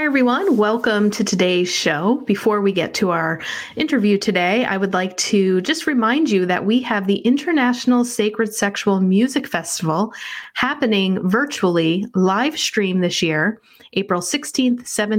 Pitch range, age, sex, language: 180-230 Hz, 30-49, female, English